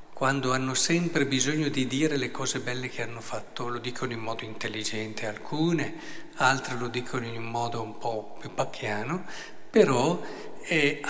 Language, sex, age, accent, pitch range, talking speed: Italian, male, 50-69, native, 135-180 Hz, 160 wpm